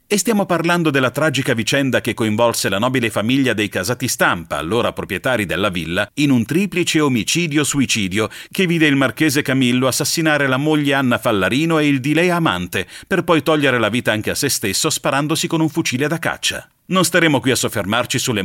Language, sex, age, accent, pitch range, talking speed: Italian, male, 40-59, native, 115-160 Hz, 190 wpm